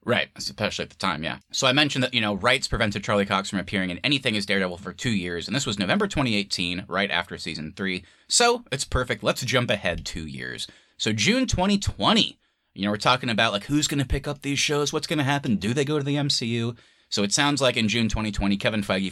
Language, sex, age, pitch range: English, male, 30-49, 95-120 Hz